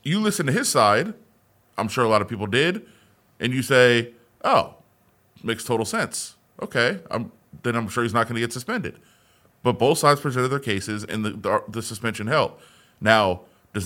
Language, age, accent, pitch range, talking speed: English, 30-49, American, 110-145 Hz, 190 wpm